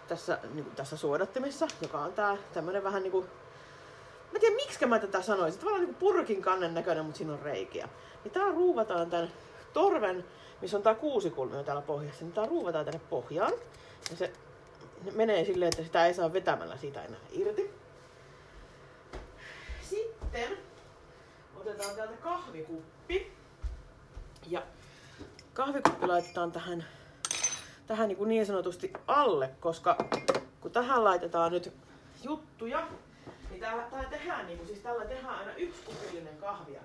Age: 30-49